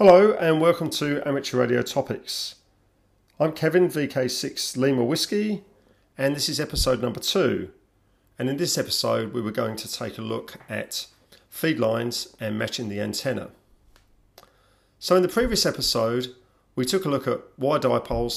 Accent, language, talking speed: British, English, 155 wpm